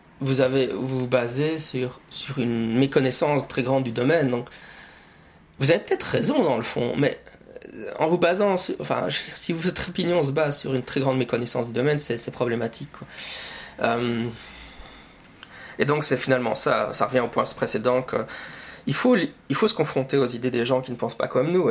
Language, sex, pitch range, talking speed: French, male, 125-150 Hz, 195 wpm